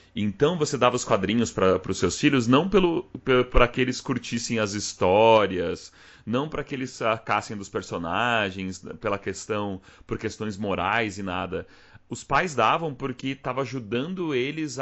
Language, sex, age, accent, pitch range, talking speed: Portuguese, male, 30-49, Brazilian, 95-130 Hz, 140 wpm